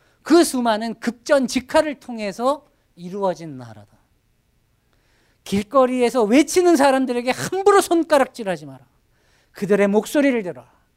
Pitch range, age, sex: 155-245 Hz, 40-59, male